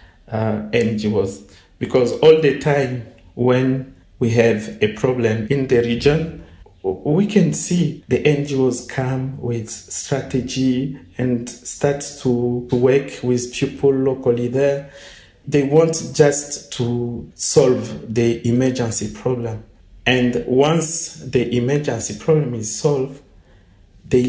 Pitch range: 115-150 Hz